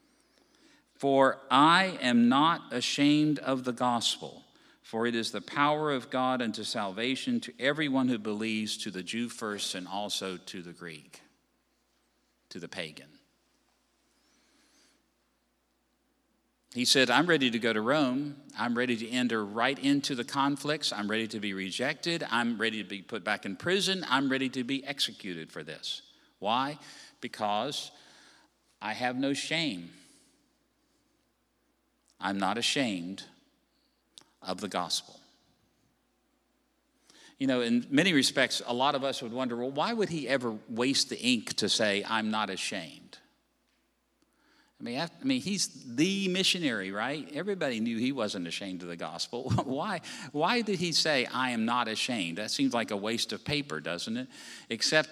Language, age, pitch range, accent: English, 50-69, 115-185 Hz, American